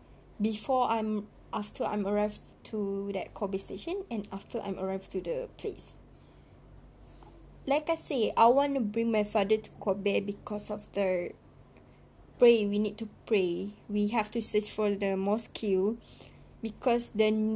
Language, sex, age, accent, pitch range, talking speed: English, female, 20-39, Malaysian, 210-250 Hz, 145 wpm